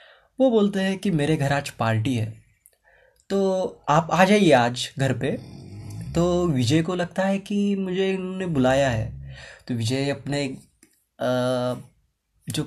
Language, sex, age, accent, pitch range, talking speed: Hindi, male, 20-39, native, 125-175 Hz, 140 wpm